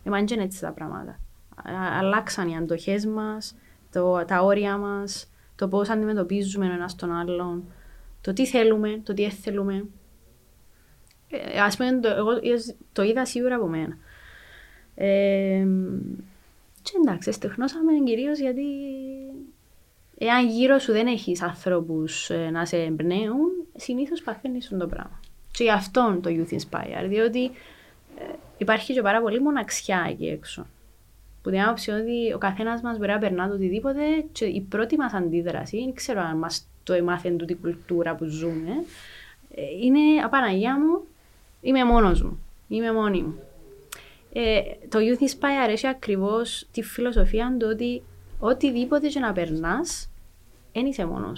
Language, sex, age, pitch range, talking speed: Greek, female, 20-39, 180-250 Hz, 140 wpm